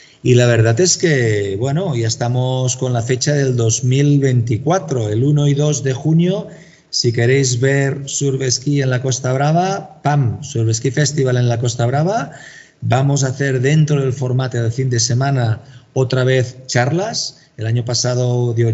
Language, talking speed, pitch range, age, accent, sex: Spanish, 165 wpm, 115-140 Hz, 40-59, Spanish, male